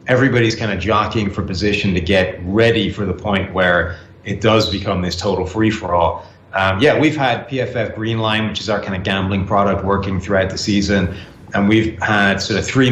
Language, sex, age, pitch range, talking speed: English, male, 30-49, 95-105 Hz, 200 wpm